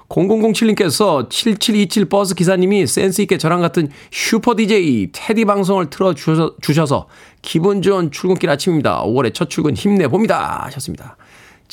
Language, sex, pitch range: Korean, male, 140-190 Hz